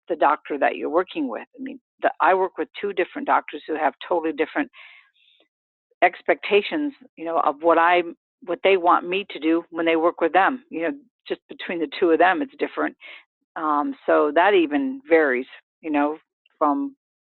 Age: 50-69